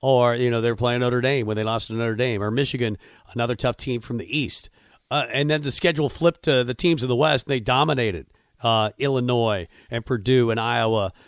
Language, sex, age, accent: English, male, 50-69, American